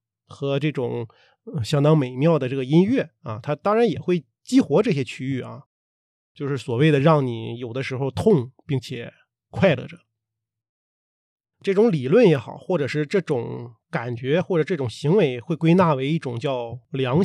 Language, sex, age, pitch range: Chinese, male, 30-49, 120-165 Hz